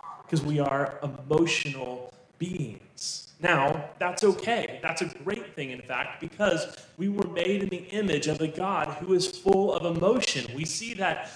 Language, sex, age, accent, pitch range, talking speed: English, male, 30-49, American, 135-200 Hz, 170 wpm